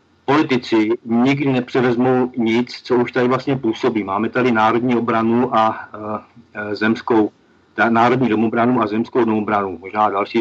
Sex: male